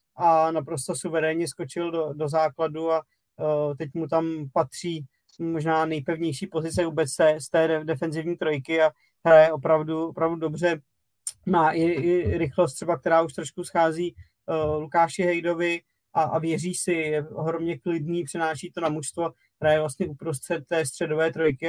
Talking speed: 145 wpm